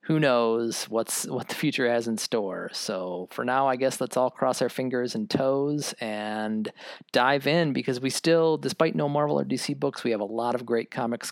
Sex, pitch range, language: male, 110-150 Hz, English